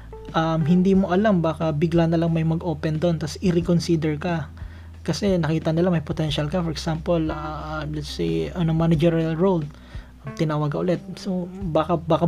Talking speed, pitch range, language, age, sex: 175 wpm, 160-185 Hz, Filipino, 20-39, male